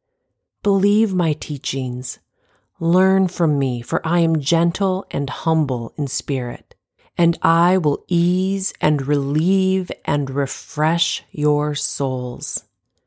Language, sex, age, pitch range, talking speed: English, female, 30-49, 140-180 Hz, 110 wpm